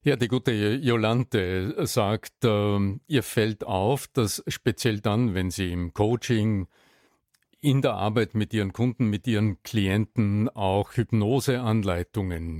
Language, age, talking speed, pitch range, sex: German, 50-69, 130 wpm, 100-125 Hz, male